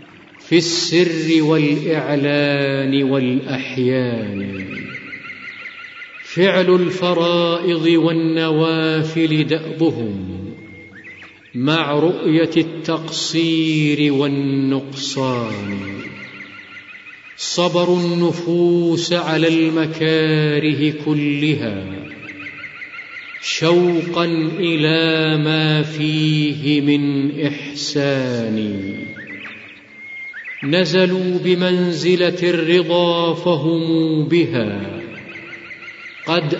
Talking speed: 50 wpm